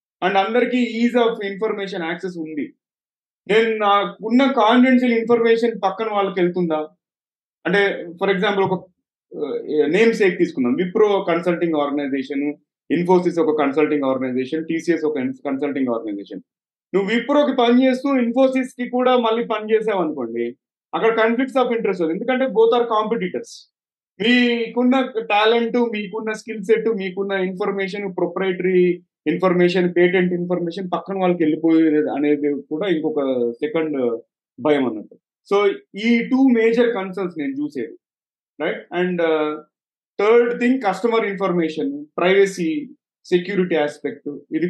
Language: Telugu